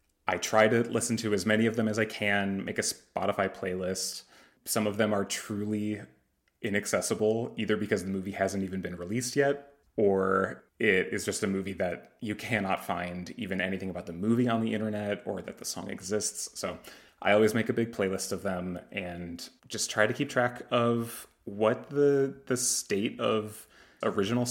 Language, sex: English, male